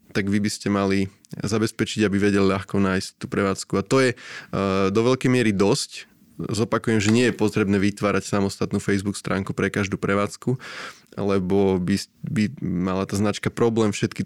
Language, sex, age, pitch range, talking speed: Slovak, male, 20-39, 100-110 Hz, 160 wpm